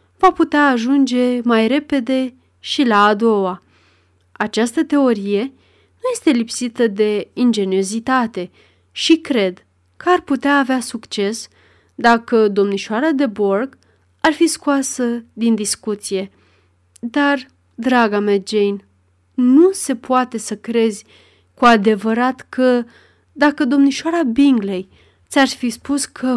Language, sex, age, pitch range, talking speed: Romanian, female, 30-49, 205-265 Hz, 115 wpm